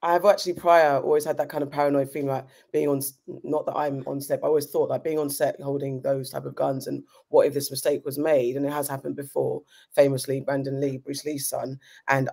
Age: 20-39